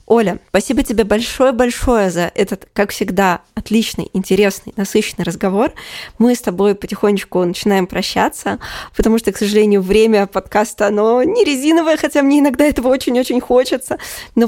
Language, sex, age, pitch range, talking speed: Russian, female, 20-39, 190-225 Hz, 140 wpm